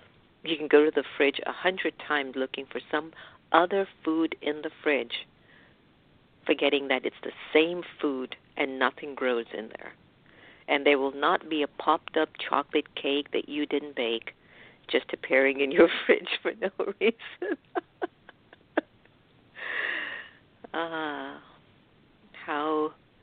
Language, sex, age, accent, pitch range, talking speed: English, female, 50-69, American, 130-150 Hz, 130 wpm